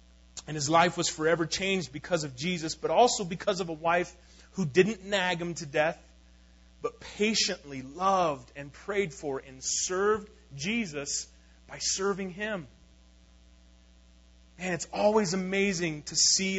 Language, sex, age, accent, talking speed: English, male, 30-49, American, 140 wpm